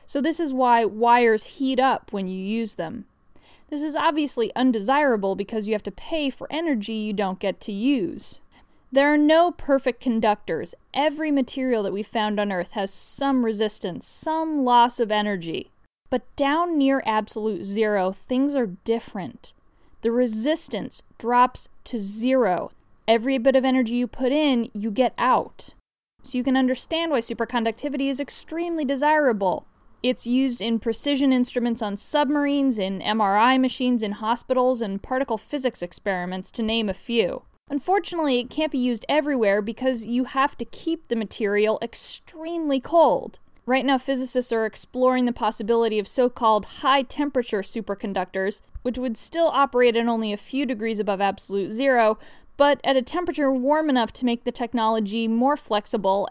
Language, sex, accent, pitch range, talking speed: English, female, American, 215-275 Hz, 160 wpm